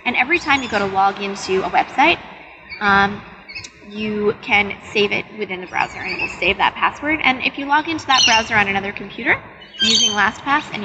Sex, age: female, 10-29